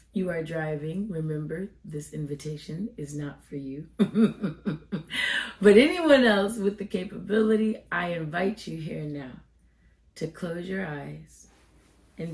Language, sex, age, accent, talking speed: English, female, 30-49, American, 125 wpm